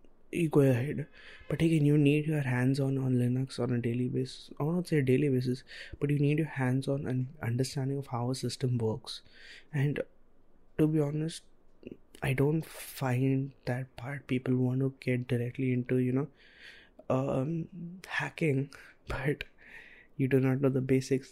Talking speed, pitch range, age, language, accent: 165 wpm, 125-140 Hz, 20-39, English, Indian